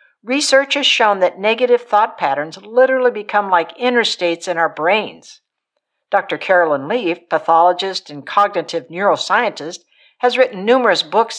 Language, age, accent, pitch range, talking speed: English, 60-79, American, 180-255 Hz, 130 wpm